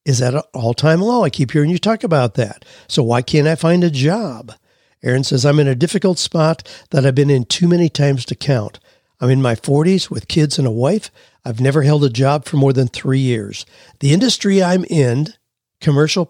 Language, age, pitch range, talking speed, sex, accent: English, 60-79, 130-170 Hz, 215 wpm, male, American